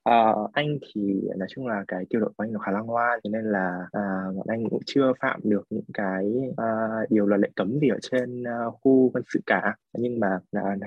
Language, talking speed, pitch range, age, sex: Vietnamese, 245 wpm, 95-120 Hz, 20-39, male